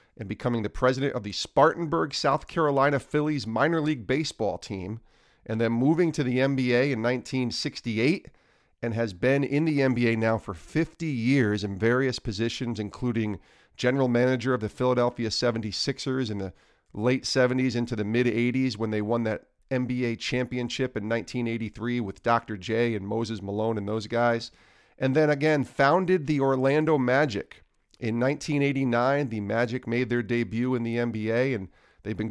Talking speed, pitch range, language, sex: 160 wpm, 110-145 Hz, English, male